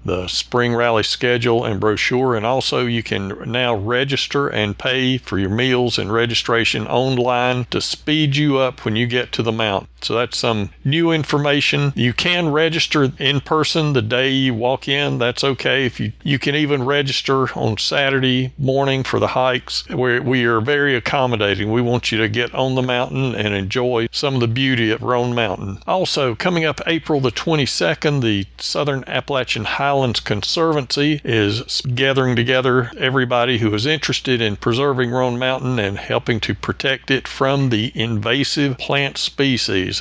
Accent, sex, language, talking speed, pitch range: American, male, English, 170 wpm, 115-140 Hz